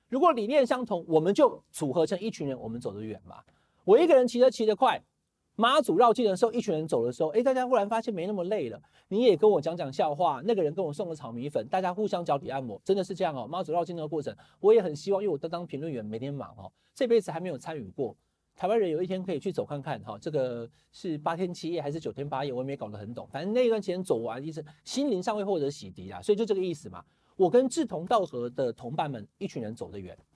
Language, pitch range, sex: Chinese, 140-235 Hz, male